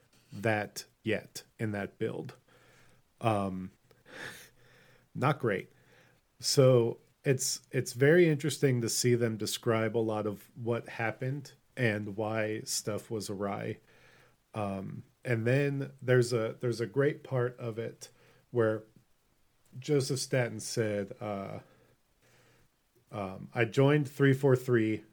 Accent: American